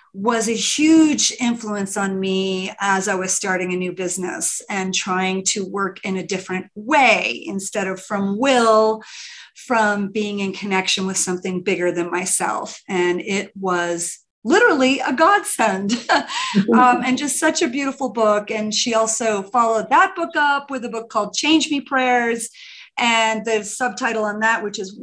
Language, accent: English, American